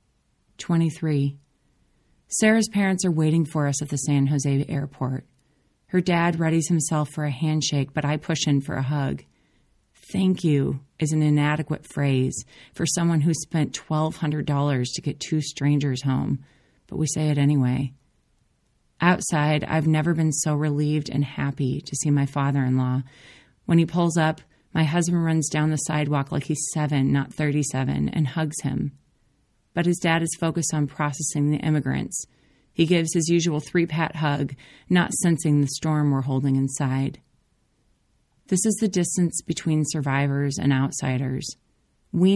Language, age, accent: English, 30-49, American